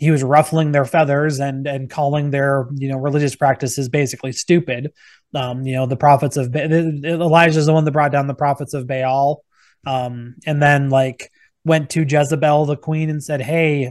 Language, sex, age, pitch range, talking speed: English, male, 20-39, 135-155 Hz, 195 wpm